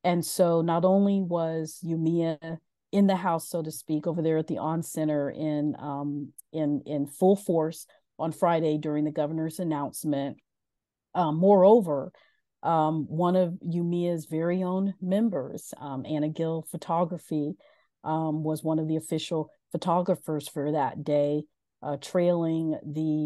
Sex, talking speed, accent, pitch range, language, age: female, 145 wpm, American, 150-175 Hz, English, 40-59